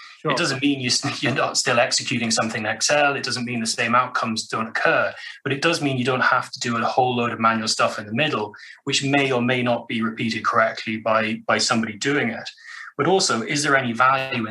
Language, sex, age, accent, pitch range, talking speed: English, male, 30-49, British, 115-140 Hz, 230 wpm